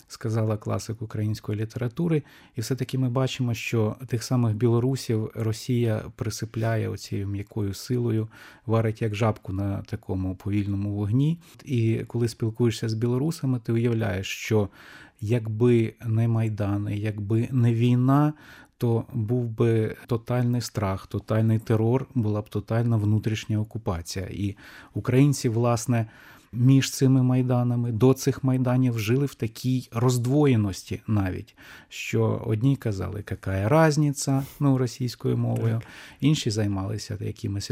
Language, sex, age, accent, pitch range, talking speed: Ukrainian, male, 20-39, native, 110-130 Hz, 120 wpm